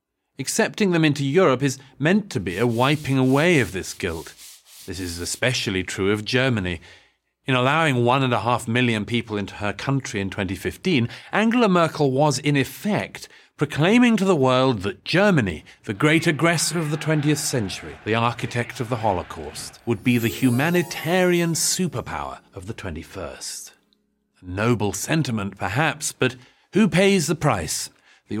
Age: 40-59